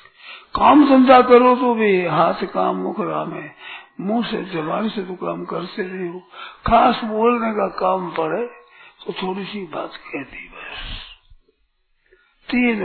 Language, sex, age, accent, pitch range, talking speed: Hindi, male, 60-79, native, 175-230 Hz, 135 wpm